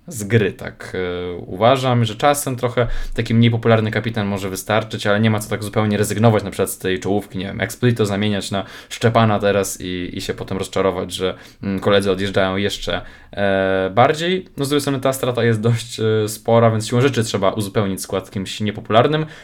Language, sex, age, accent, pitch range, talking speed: Polish, male, 20-39, native, 100-120 Hz, 180 wpm